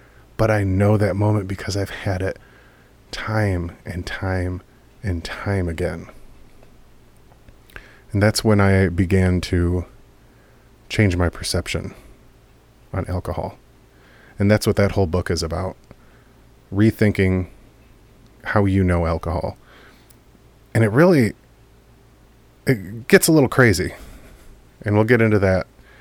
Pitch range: 90-115 Hz